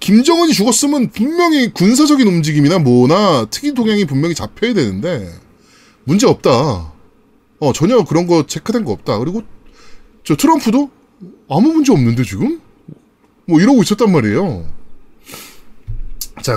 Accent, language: native, Korean